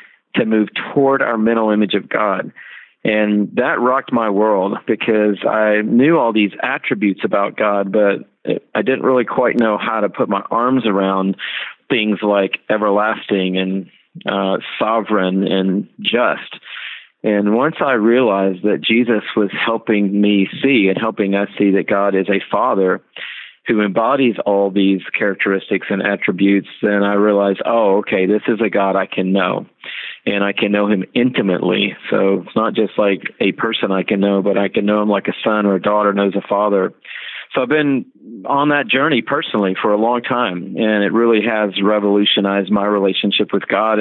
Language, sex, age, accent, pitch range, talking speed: English, male, 40-59, American, 100-110 Hz, 175 wpm